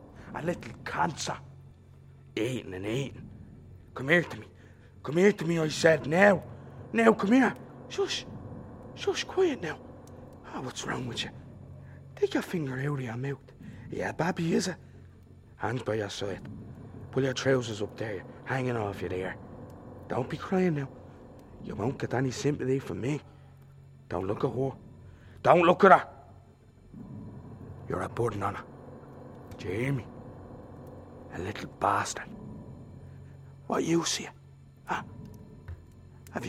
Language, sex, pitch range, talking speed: English, male, 110-145 Hz, 150 wpm